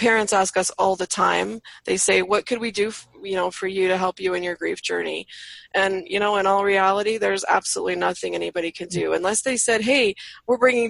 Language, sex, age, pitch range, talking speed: English, female, 20-39, 180-225 Hz, 225 wpm